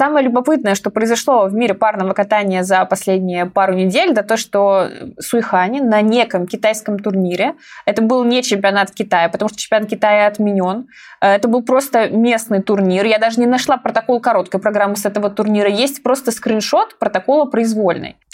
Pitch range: 200-250 Hz